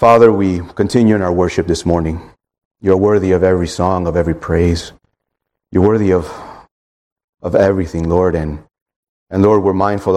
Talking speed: 160 wpm